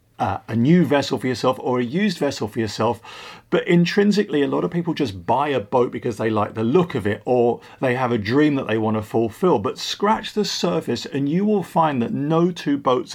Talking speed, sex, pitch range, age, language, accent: 230 wpm, male, 115-170 Hz, 40-59, English, British